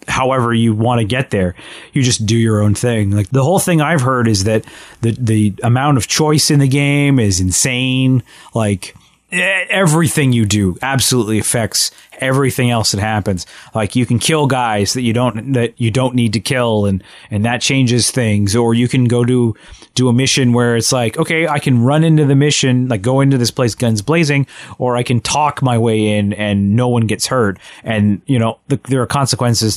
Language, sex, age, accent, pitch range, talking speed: English, male, 30-49, American, 110-135 Hz, 205 wpm